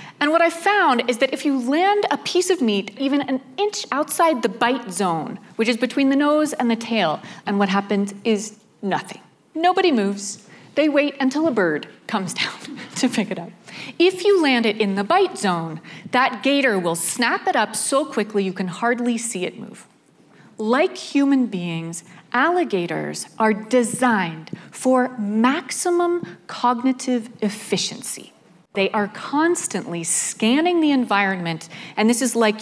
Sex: female